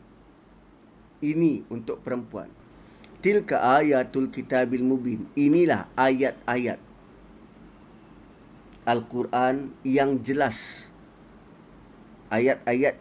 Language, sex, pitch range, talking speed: Malay, male, 130-170 Hz, 60 wpm